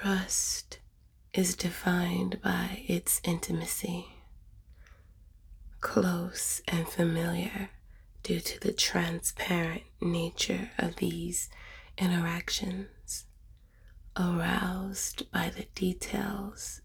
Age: 20-39